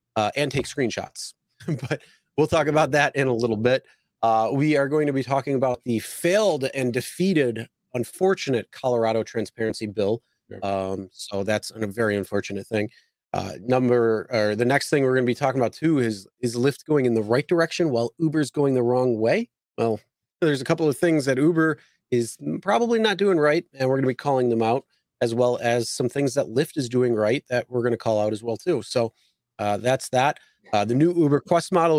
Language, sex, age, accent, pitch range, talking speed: English, male, 30-49, American, 115-140 Hz, 215 wpm